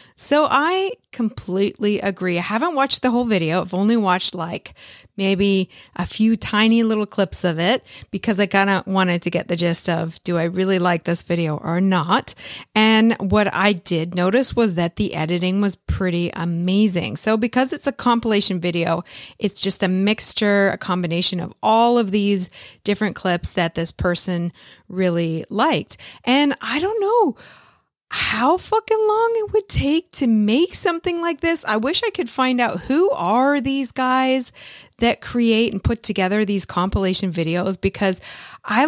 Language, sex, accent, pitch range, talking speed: English, female, American, 185-260 Hz, 170 wpm